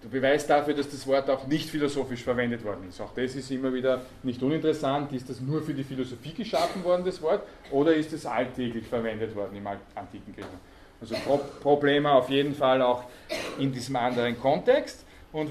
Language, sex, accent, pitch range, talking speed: German, male, Austrian, 130-155 Hz, 185 wpm